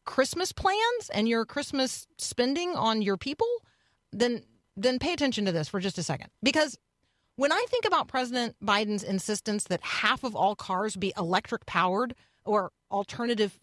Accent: American